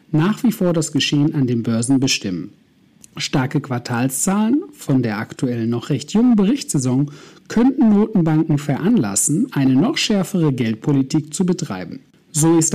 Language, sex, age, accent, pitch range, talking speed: German, male, 60-79, German, 135-200 Hz, 135 wpm